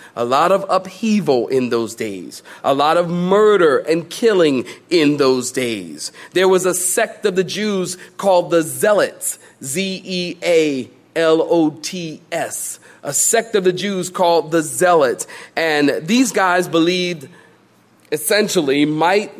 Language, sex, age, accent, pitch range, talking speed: English, male, 40-59, American, 160-225 Hz, 125 wpm